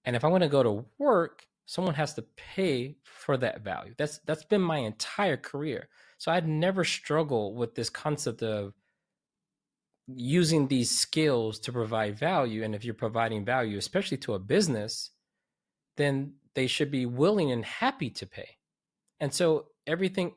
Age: 20-39